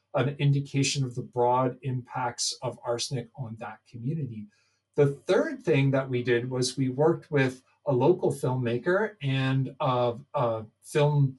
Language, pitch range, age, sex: English, 125-150 Hz, 40-59, male